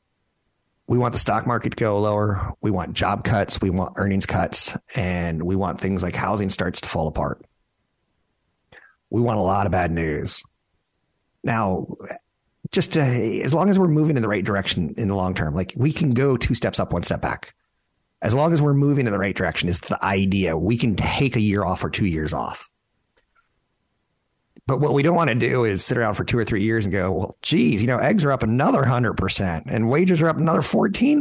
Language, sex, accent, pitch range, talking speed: English, male, American, 90-125 Hz, 215 wpm